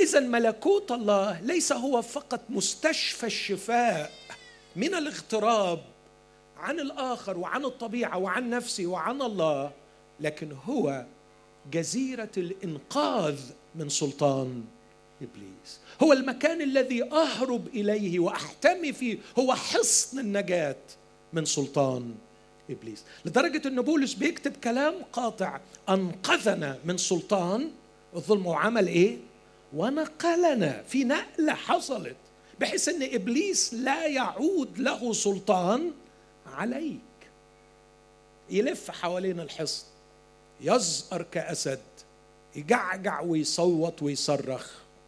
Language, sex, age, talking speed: Arabic, male, 50-69, 95 wpm